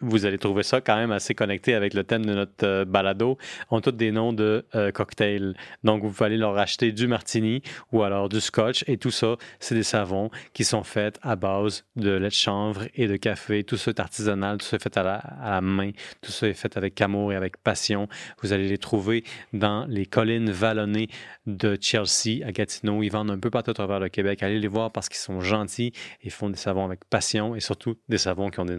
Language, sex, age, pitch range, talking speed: French, male, 30-49, 100-120 Hz, 240 wpm